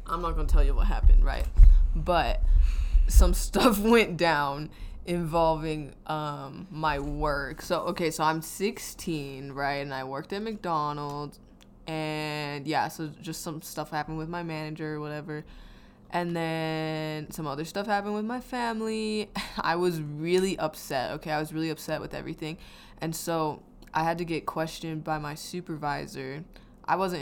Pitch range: 150-185 Hz